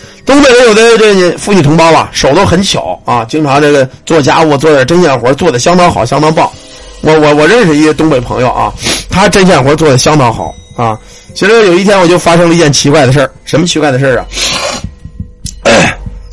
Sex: male